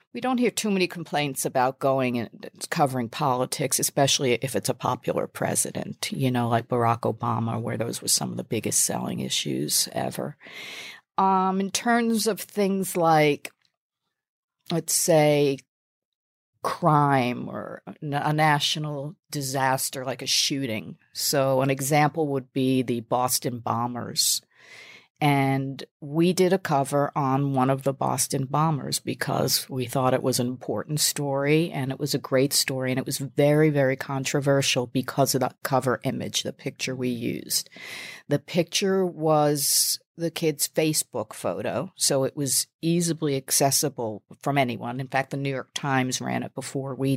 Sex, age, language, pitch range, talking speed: female, 50-69, English, 130-155 Hz, 155 wpm